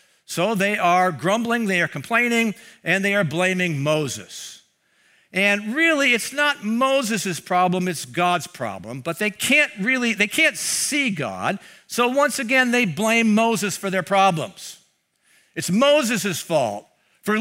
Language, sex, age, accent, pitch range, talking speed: English, male, 60-79, American, 175-265 Hz, 145 wpm